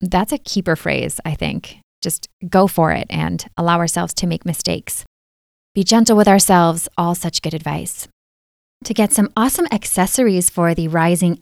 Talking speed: 170 wpm